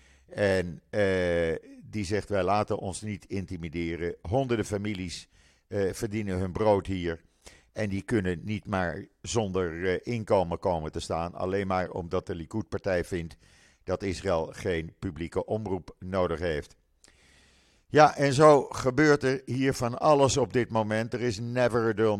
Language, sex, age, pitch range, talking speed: Dutch, male, 50-69, 90-115 Hz, 150 wpm